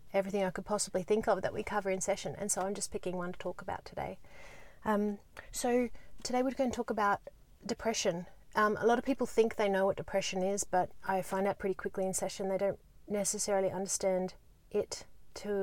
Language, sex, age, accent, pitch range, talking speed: English, female, 30-49, Australian, 185-215 Hz, 210 wpm